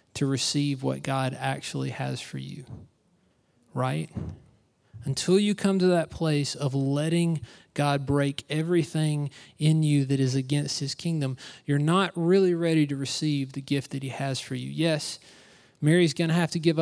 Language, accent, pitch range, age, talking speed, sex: English, American, 135-170 Hz, 30-49, 165 wpm, male